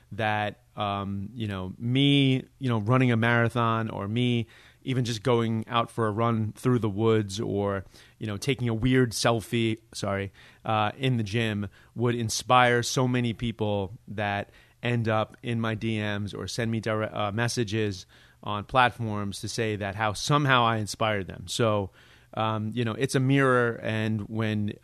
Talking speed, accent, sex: 170 wpm, American, male